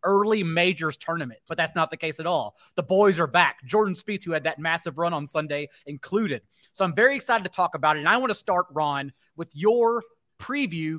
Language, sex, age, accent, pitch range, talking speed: English, male, 30-49, American, 160-210 Hz, 225 wpm